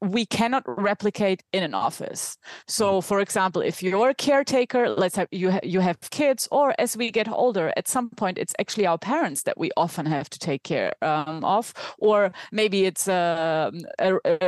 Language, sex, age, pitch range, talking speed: English, female, 30-49, 185-240 Hz, 190 wpm